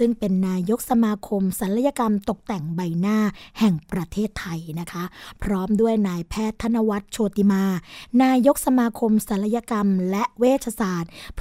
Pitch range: 195-240 Hz